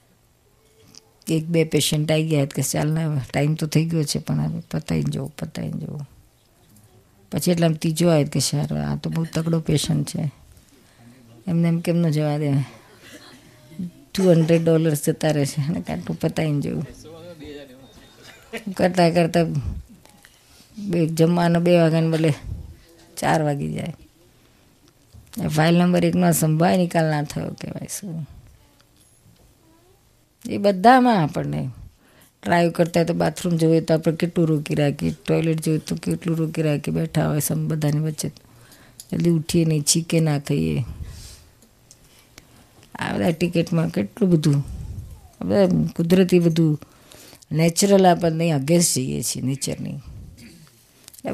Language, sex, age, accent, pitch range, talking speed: Gujarati, female, 20-39, native, 135-170 Hz, 130 wpm